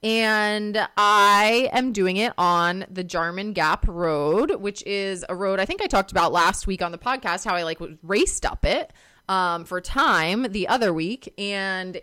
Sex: female